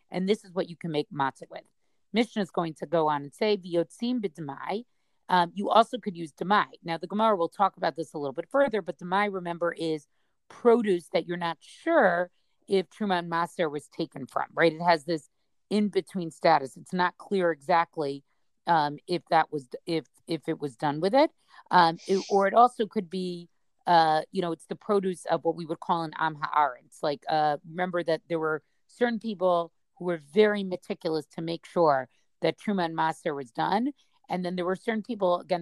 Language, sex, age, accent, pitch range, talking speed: English, female, 40-59, American, 160-200 Hz, 200 wpm